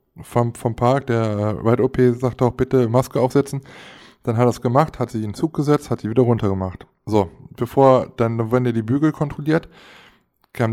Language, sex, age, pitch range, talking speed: German, male, 20-39, 115-140 Hz, 200 wpm